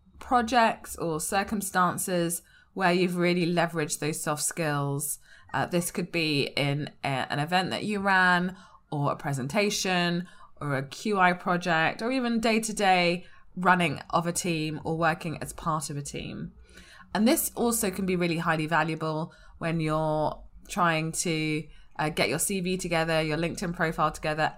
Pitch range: 160-220 Hz